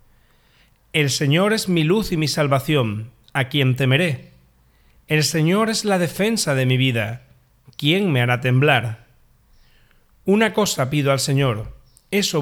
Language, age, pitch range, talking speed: Spanish, 40-59, 125-165 Hz, 140 wpm